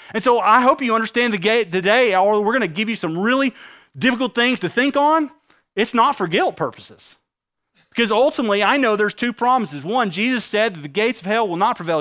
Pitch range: 185-240 Hz